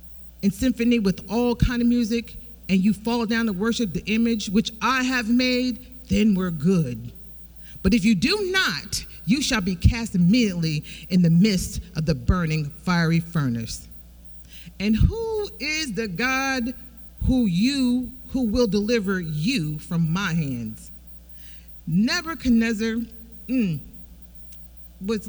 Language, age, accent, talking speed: English, 40-59, American, 135 wpm